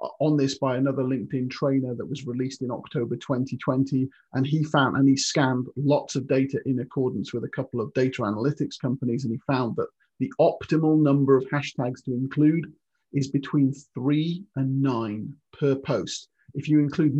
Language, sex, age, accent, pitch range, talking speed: English, male, 40-59, British, 130-150 Hz, 180 wpm